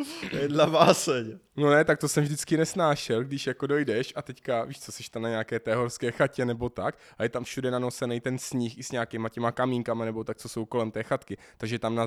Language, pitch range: Czech, 125-160 Hz